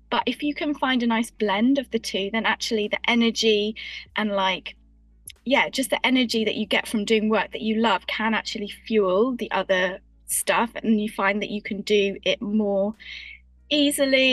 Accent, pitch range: British, 200-235 Hz